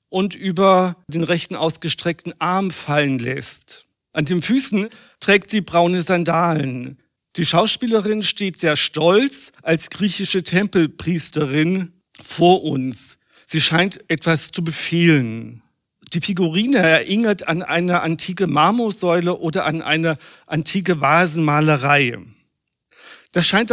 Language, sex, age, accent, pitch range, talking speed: German, male, 50-69, German, 160-195 Hz, 110 wpm